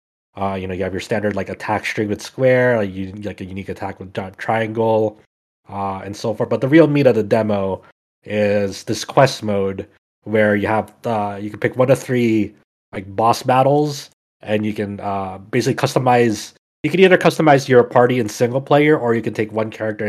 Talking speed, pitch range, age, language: 210 wpm, 100-120 Hz, 30-49, English